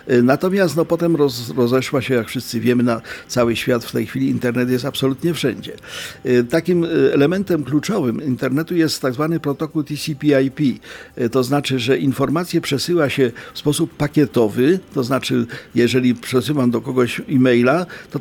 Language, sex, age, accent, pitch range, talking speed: Polish, male, 50-69, native, 125-155 Hz, 140 wpm